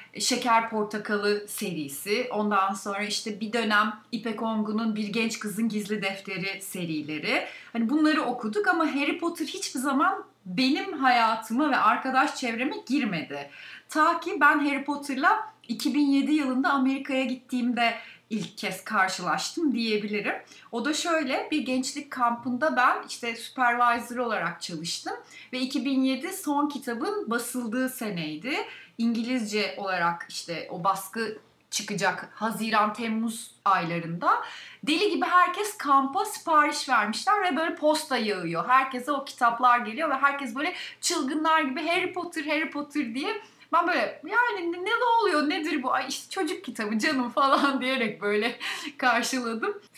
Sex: female